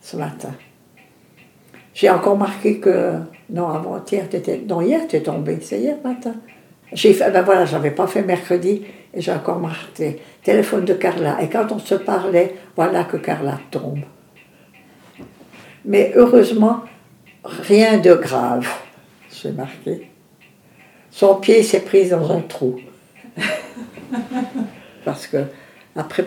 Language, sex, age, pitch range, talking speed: French, female, 60-79, 165-215 Hz, 135 wpm